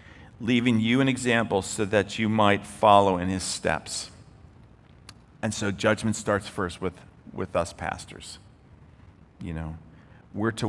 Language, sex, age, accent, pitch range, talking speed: English, male, 40-59, American, 100-115 Hz, 140 wpm